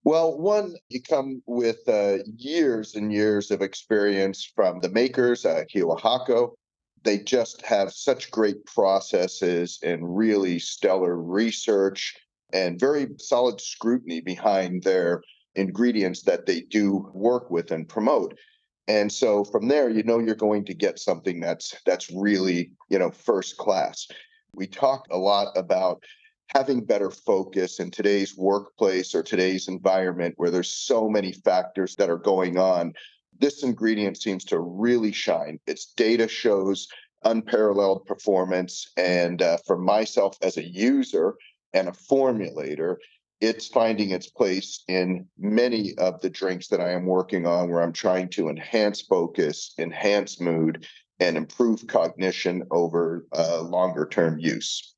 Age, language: 40-59, English